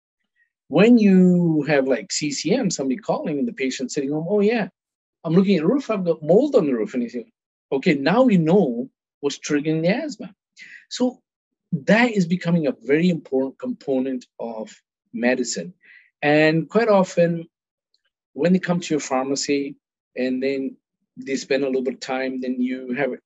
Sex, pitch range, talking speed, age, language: male, 135-195 Hz, 175 wpm, 50-69, English